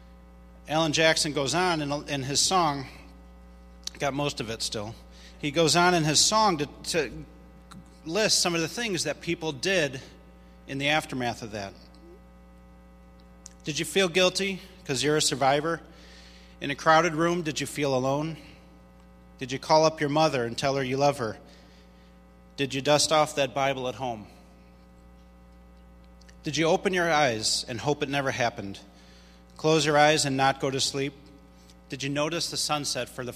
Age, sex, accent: 30-49, male, American